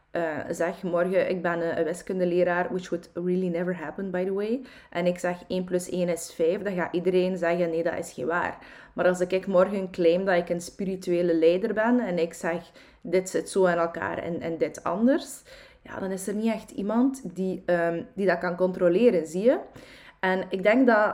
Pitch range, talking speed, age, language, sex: 175-220 Hz, 210 wpm, 20-39, Dutch, female